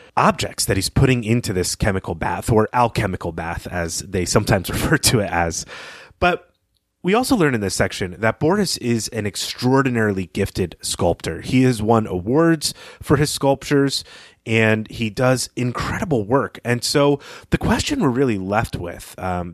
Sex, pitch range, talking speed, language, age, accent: male, 95-130 Hz, 165 wpm, English, 30-49, American